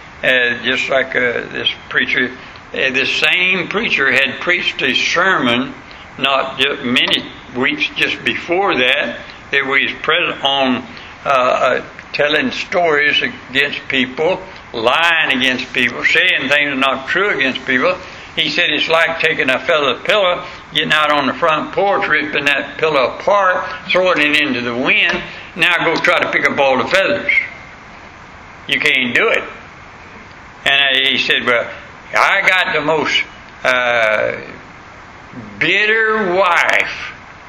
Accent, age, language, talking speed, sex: American, 60-79, English, 140 wpm, male